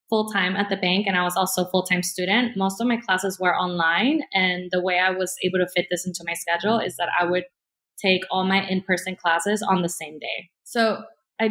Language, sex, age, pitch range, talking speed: English, female, 20-39, 180-210 Hz, 230 wpm